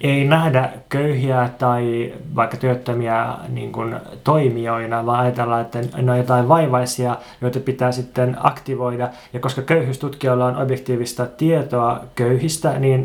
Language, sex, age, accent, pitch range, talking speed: Finnish, male, 30-49, native, 125-145 Hz, 130 wpm